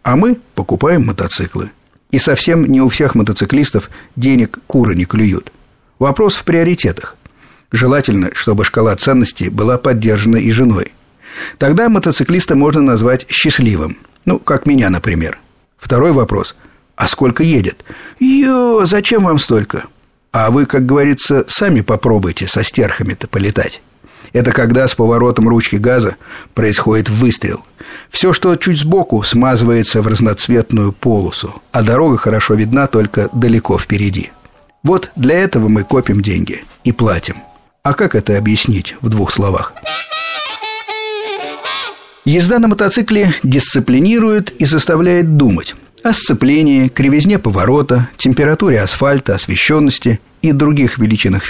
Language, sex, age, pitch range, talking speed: Russian, male, 50-69, 110-150 Hz, 125 wpm